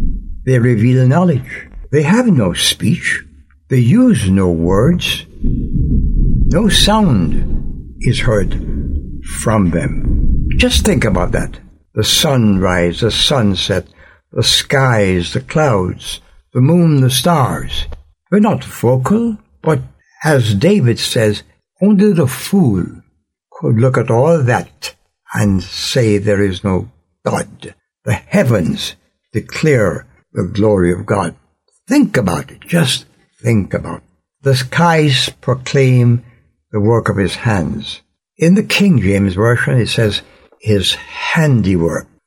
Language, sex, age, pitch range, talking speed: English, male, 60-79, 90-130 Hz, 120 wpm